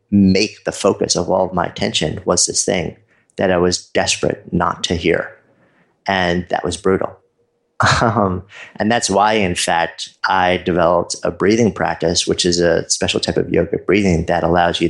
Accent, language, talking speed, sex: American, English, 175 wpm, male